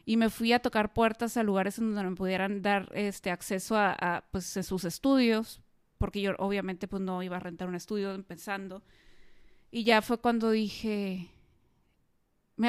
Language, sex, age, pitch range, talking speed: Spanish, female, 20-39, 200-235 Hz, 180 wpm